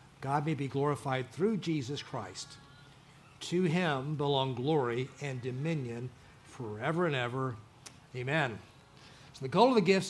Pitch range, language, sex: 135-180 Hz, English, male